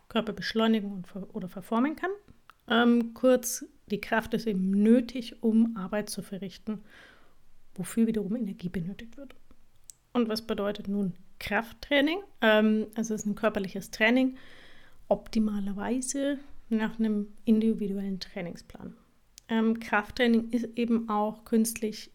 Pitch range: 205-235 Hz